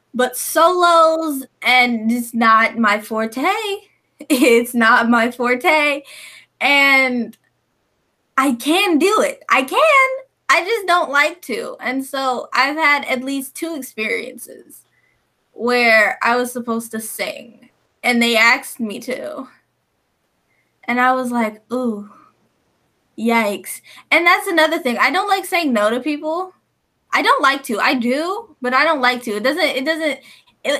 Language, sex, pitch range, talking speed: English, female, 245-325 Hz, 145 wpm